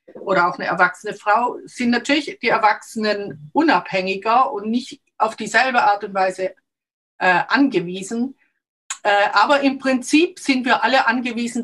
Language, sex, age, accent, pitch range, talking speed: German, female, 50-69, German, 195-265 Hz, 140 wpm